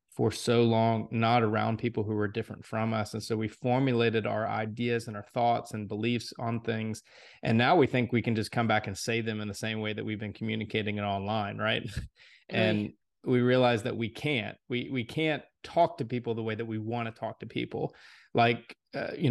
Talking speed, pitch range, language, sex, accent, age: 220 wpm, 110-125 Hz, English, male, American, 20-39